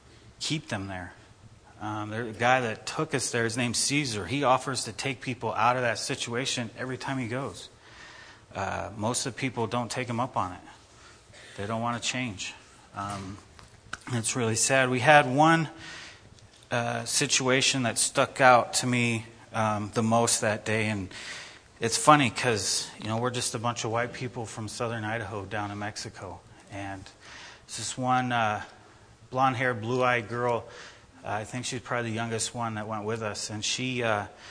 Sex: male